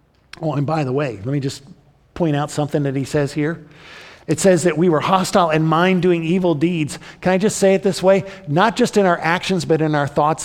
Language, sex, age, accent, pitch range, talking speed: English, male, 50-69, American, 135-190 Hz, 235 wpm